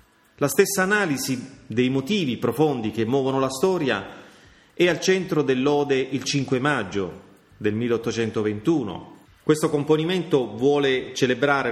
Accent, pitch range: native, 110-140 Hz